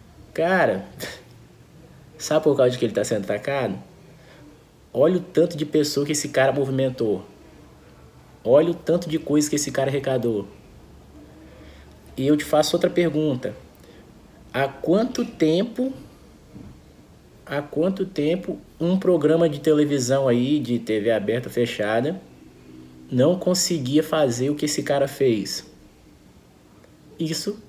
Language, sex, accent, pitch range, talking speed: Portuguese, male, Brazilian, 130-165 Hz, 125 wpm